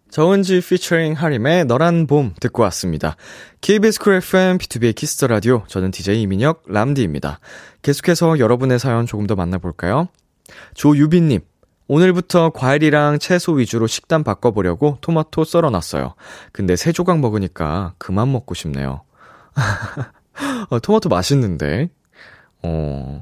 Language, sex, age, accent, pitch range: Korean, male, 20-39, native, 100-170 Hz